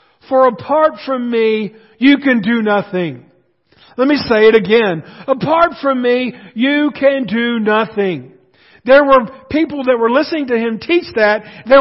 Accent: American